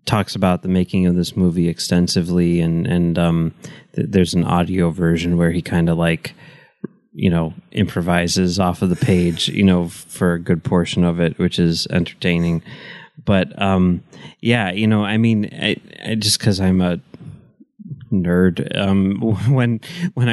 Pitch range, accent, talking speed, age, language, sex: 90-115 Hz, American, 170 wpm, 30-49, English, male